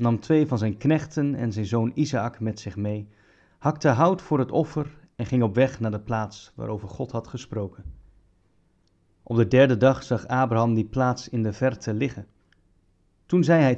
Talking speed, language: 185 wpm, Dutch